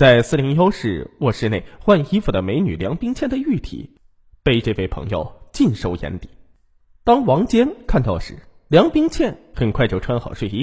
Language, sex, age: Chinese, male, 20-39